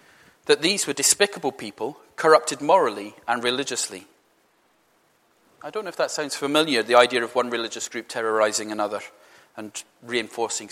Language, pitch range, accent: English, 130-225 Hz, British